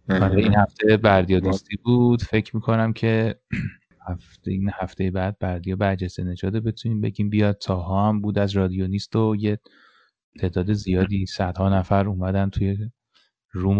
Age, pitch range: 30-49, 95-110 Hz